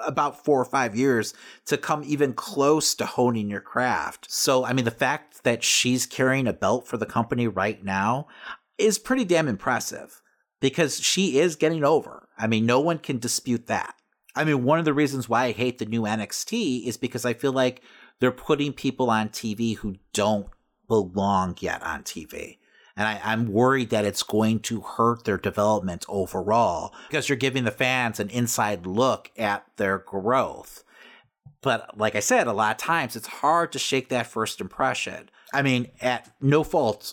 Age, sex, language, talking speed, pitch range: 40-59, male, English, 185 wpm, 105-130 Hz